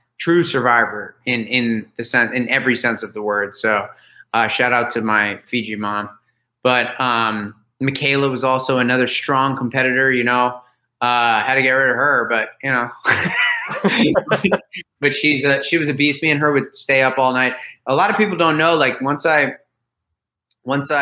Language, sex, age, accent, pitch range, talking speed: English, male, 30-49, American, 120-140 Hz, 180 wpm